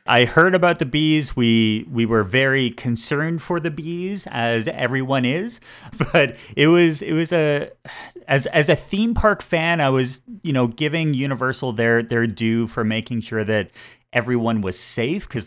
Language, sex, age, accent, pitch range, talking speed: English, male, 30-49, American, 115-150 Hz, 175 wpm